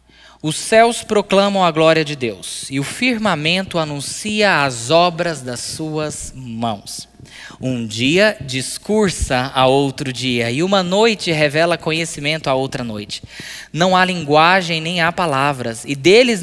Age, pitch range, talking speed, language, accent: 20-39, 125-170 Hz, 140 wpm, Portuguese, Brazilian